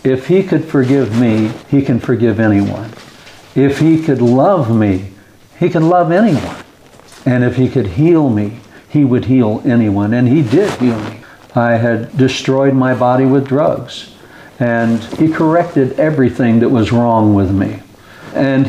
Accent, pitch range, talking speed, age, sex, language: American, 115-140 Hz, 160 wpm, 60-79, male, English